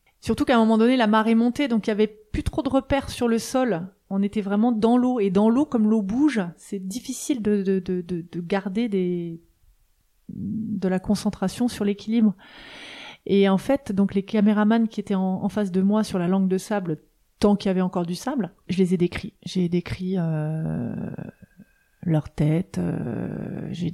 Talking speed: 200 wpm